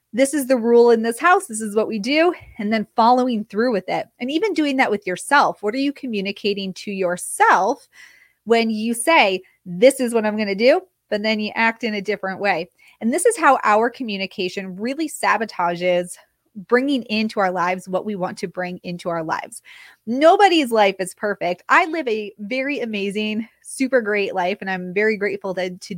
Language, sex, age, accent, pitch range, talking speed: English, female, 20-39, American, 195-260 Hz, 195 wpm